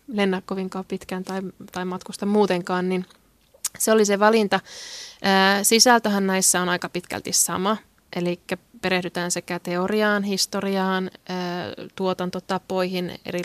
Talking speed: 110 wpm